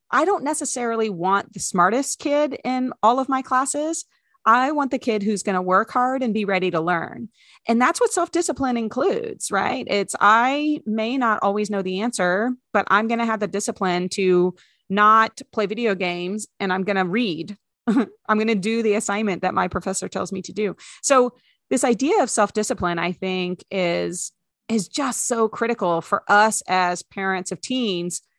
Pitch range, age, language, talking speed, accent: 185-235 Hz, 30-49, English, 185 wpm, American